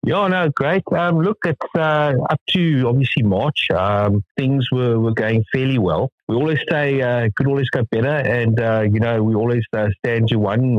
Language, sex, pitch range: English, male, 105-135 Hz